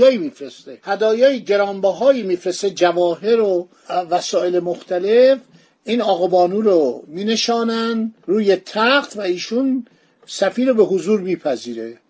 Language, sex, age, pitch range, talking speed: Persian, male, 50-69, 180-235 Hz, 105 wpm